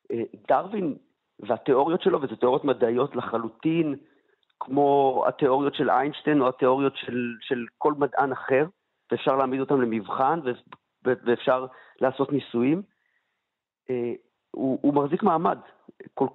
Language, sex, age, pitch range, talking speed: Hebrew, male, 50-69, 120-160 Hz, 110 wpm